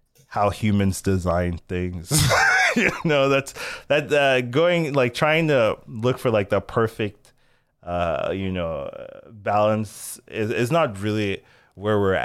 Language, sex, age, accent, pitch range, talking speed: English, male, 20-39, American, 90-120 Hz, 135 wpm